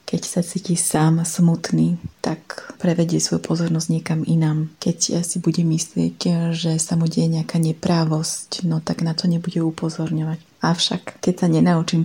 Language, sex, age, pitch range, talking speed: Slovak, female, 30-49, 160-175 Hz, 155 wpm